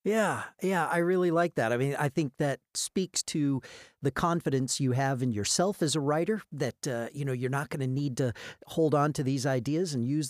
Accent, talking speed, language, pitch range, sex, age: American, 225 wpm, English, 120-150 Hz, male, 40-59